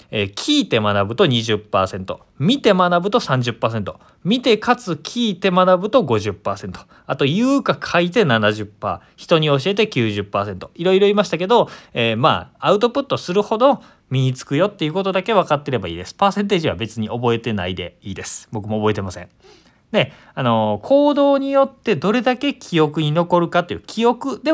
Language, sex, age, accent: Japanese, male, 20-39, native